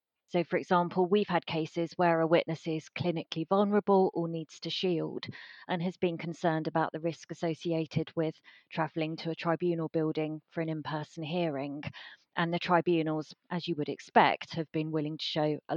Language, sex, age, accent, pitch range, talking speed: English, female, 30-49, British, 155-175 Hz, 180 wpm